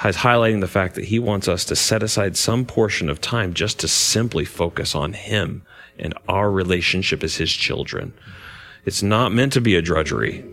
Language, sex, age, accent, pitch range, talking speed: English, male, 40-59, American, 95-120 Hz, 195 wpm